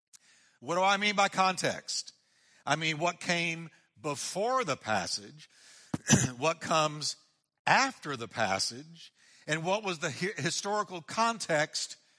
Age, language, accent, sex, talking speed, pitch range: 60-79, English, American, male, 120 wpm, 140-195 Hz